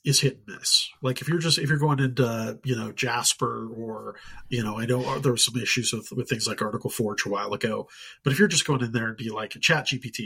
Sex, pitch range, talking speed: male, 115-140 Hz, 270 wpm